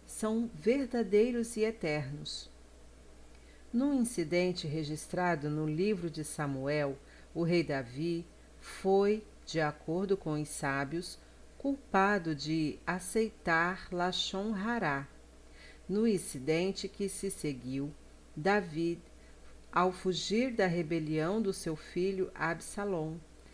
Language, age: Portuguese, 40-59